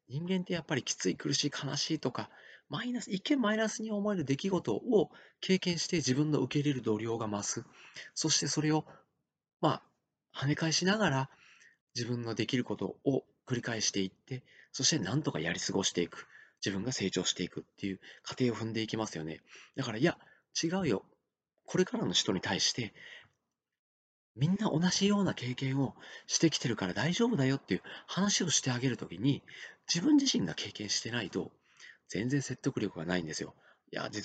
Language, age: Japanese, 40-59